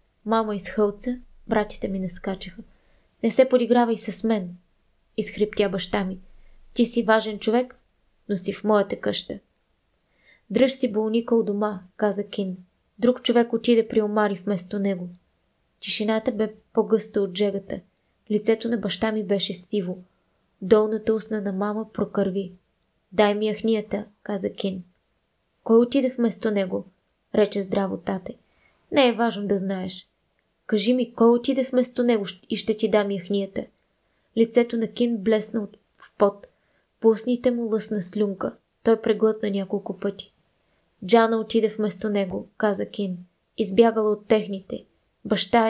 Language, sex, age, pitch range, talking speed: Bulgarian, female, 20-39, 200-225 Hz, 140 wpm